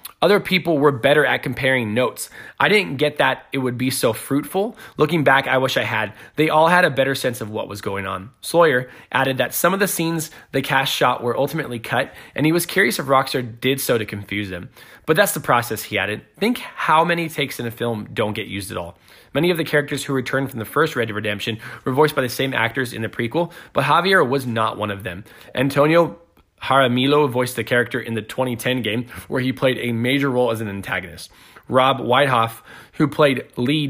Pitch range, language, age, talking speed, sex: 115-150 Hz, English, 20-39, 225 wpm, male